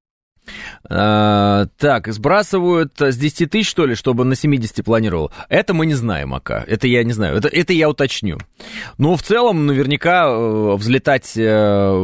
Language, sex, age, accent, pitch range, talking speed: Russian, male, 30-49, native, 100-140 Hz, 145 wpm